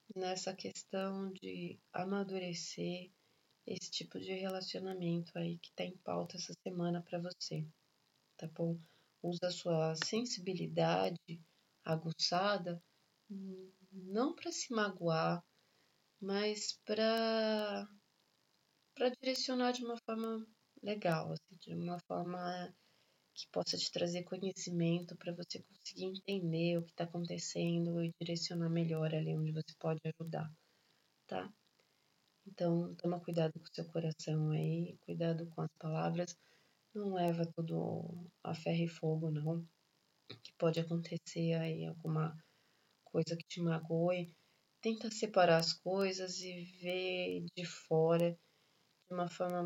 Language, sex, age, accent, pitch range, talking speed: Portuguese, female, 20-39, Brazilian, 165-190 Hz, 125 wpm